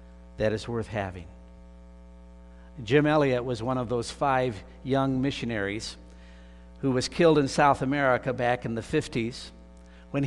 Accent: American